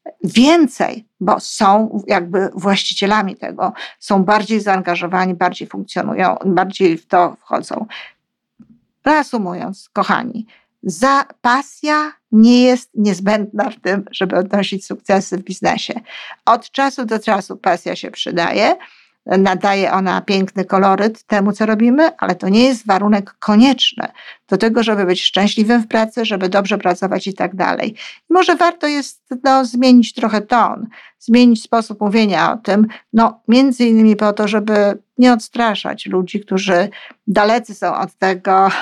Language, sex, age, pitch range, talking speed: Polish, female, 50-69, 190-235 Hz, 135 wpm